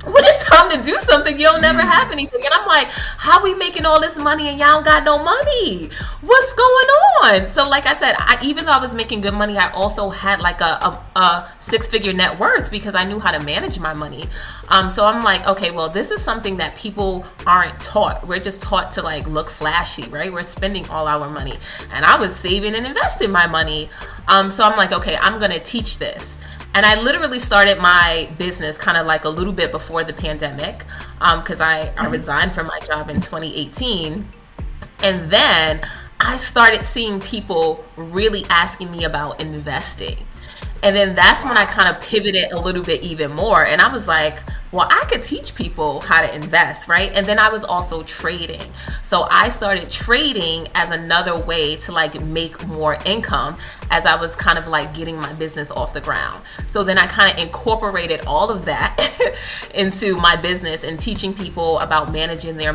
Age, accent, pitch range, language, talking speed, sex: 30-49, American, 160-215 Hz, English, 200 wpm, female